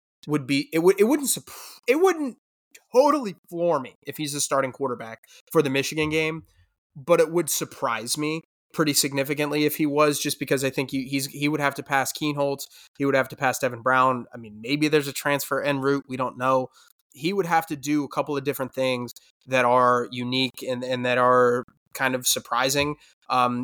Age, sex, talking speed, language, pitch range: 20-39, male, 205 wpm, English, 130-150 Hz